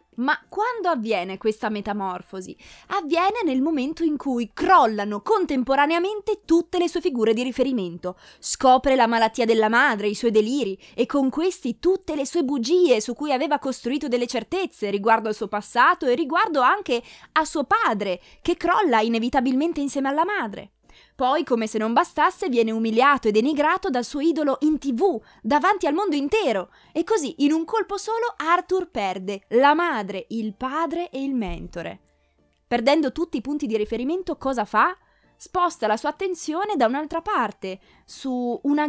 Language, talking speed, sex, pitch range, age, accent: Italian, 160 wpm, female, 225-330 Hz, 20-39, native